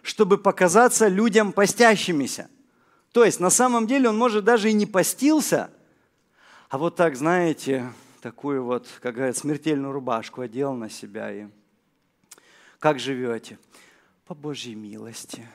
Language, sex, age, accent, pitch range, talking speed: Russian, male, 40-59, native, 135-220 Hz, 130 wpm